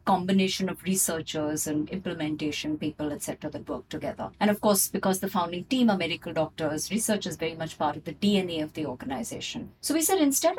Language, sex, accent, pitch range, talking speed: English, female, Indian, 165-230 Hz, 200 wpm